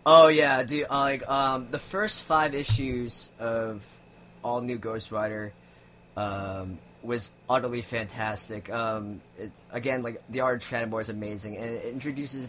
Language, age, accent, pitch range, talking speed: English, 20-39, American, 105-130 Hz, 155 wpm